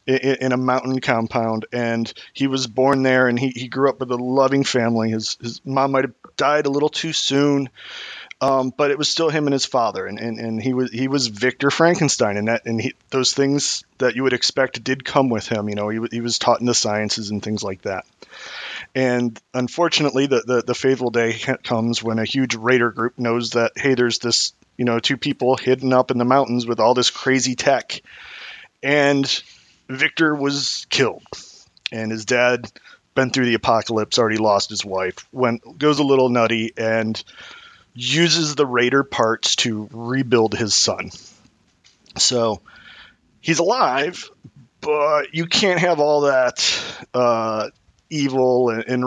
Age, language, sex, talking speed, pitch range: 30-49, English, male, 180 wpm, 115-135 Hz